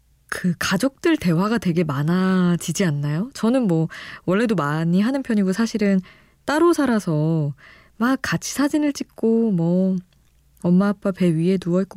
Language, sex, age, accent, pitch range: Korean, female, 20-39, native, 160-205 Hz